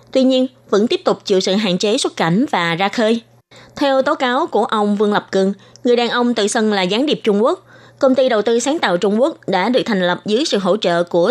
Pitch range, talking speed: 185-235 Hz, 260 wpm